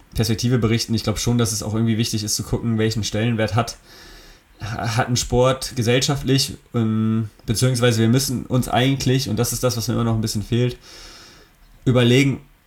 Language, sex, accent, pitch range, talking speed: German, male, German, 115-130 Hz, 175 wpm